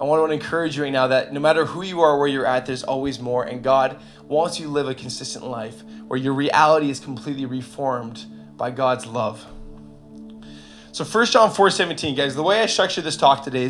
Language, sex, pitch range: English, male, 120-150 Hz